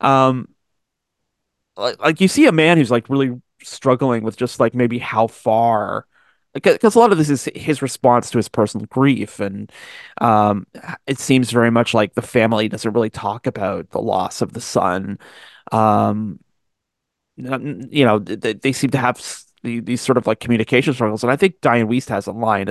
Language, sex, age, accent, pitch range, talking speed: English, male, 30-49, American, 110-140 Hz, 185 wpm